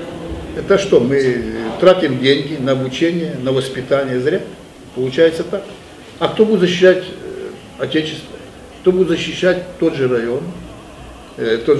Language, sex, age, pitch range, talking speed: Ukrainian, male, 60-79, 130-170 Hz, 120 wpm